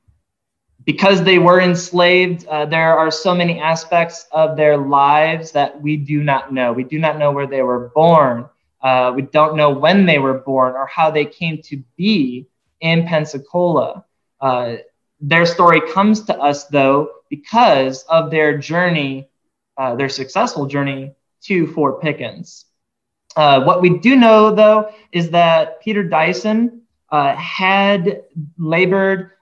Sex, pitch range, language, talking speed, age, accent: male, 145-175 Hz, English, 150 wpm, 20-39, American